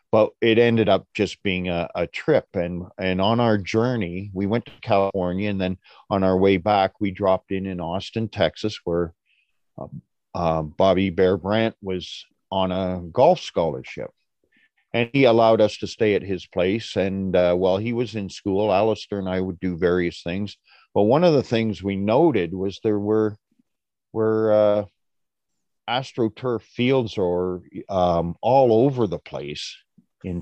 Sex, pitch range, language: male, 95-115 Hz, English